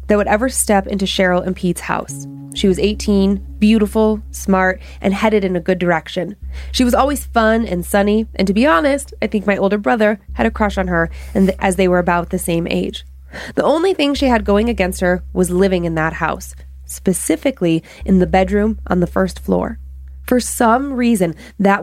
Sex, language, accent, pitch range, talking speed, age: female, English, American, 170-215 Hz, 205 wpm, 20-39